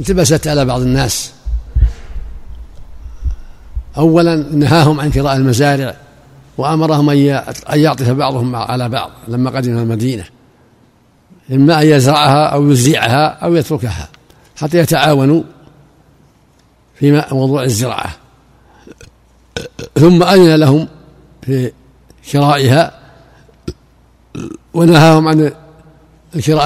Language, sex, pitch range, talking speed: Arabic, male, 130-155 Hz, 85 wpm